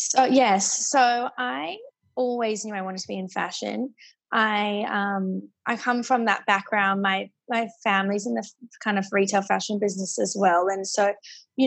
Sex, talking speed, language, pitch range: female, 170 wpm, English, 200-240 Hz